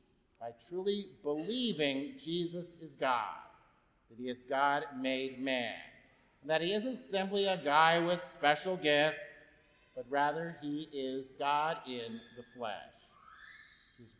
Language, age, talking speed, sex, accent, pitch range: English, 50-69, 130 wpm, male, American, 125-155 Hz